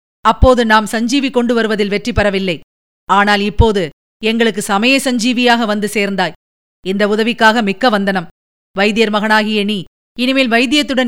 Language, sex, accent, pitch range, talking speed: Tamil, female, native, 200-275 Hz, 125 wpm